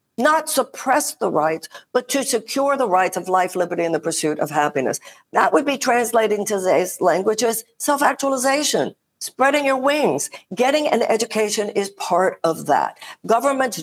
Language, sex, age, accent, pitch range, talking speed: English, female, 60-79, American, 195-270 Hz, 155 wpm